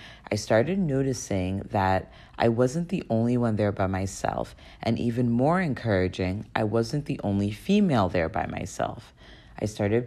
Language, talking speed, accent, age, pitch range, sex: English, 155 wpm, American, 30-49, 95-120 Hz, female